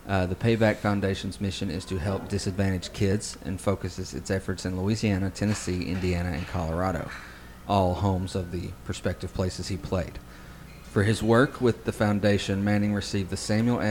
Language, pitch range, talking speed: English, 95-110 Hz, 165 wpm